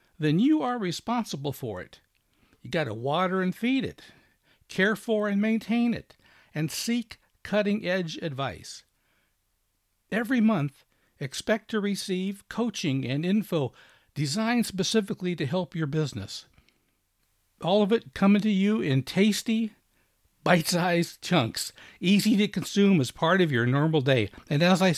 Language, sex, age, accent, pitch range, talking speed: English, male, 60-79, American, 145-215 Hz, 140 wpm